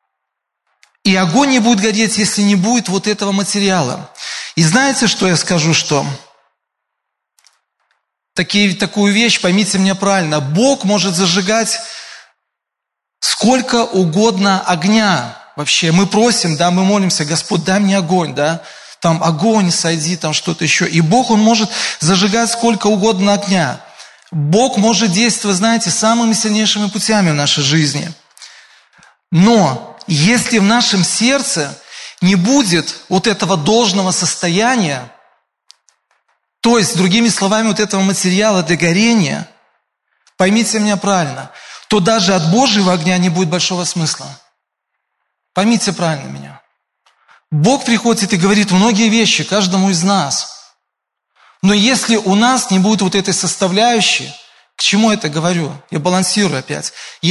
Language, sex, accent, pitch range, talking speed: Russian, male, native, 175-220 Hz, 130 wpm